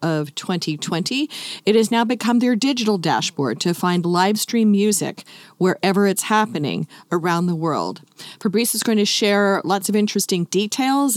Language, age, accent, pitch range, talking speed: English, 40-59, American, 175-225 Hz, 155 wpm